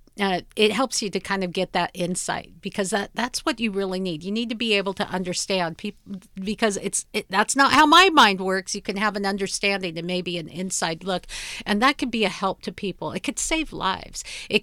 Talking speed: 235 wpm